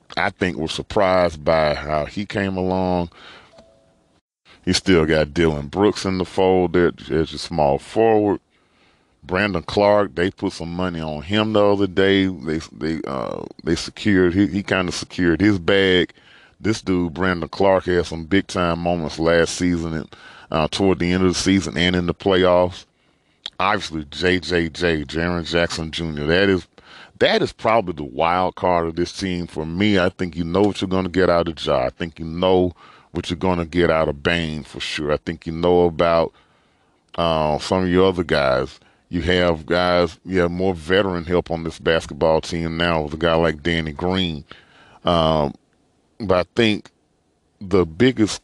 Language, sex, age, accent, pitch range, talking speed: English, male, 40-59, American, 80-95 Hz, 185 wpm